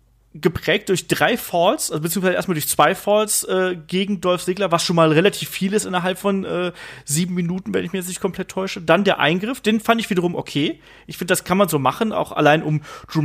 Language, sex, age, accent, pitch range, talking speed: German, male, 30-49, German, 160-200 Hz, 230 wpm